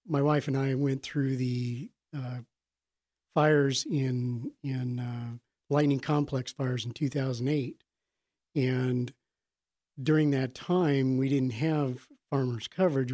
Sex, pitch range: male, 125-145 Hz